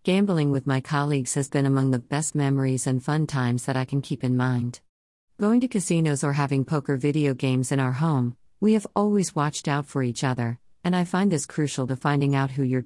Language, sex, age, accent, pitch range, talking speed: English, female, 50-69, American, 130-160 Hz, 225 wpm